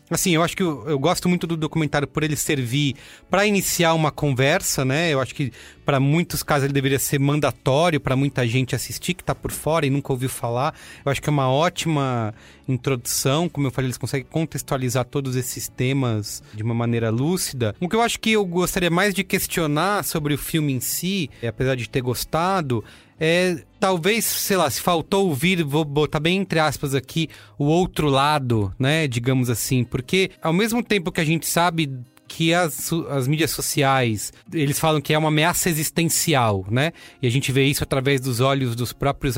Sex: male